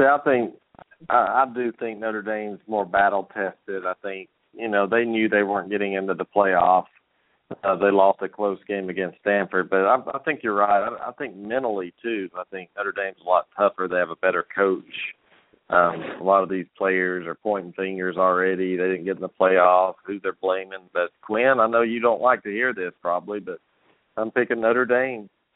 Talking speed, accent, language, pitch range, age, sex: 210 wpm, American, English, 95-110 Hz, 40-59, male